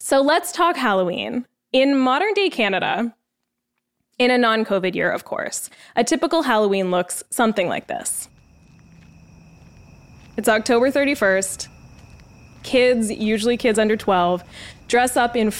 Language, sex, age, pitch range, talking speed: English, female, 10-29, 190-250 Hz, 120 wpm